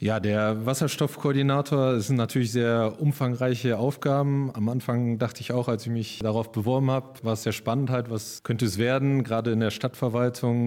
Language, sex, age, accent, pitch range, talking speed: German, male, 30-49, German, 110-125 Hz, 185 wpm